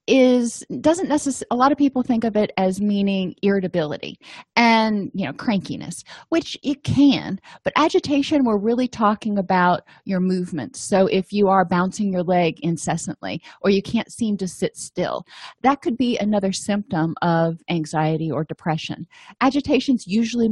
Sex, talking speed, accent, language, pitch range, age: female, 160 wpm, American, English, 180-235 Hz, 30-49